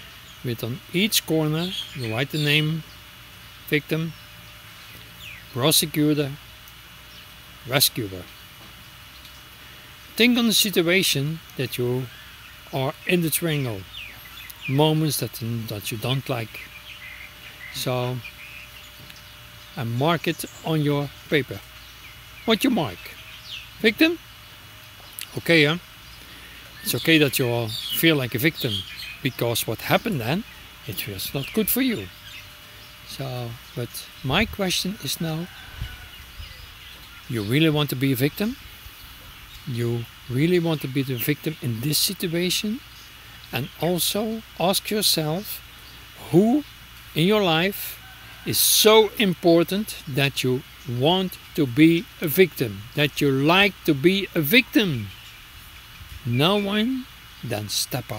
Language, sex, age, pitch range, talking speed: Dutch, male, 60-79, 115-170 Hz, 105 wpm